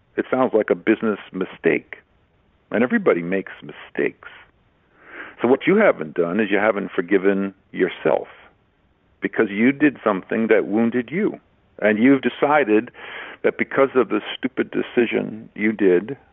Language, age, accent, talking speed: English, 50-69, American, 140 wpm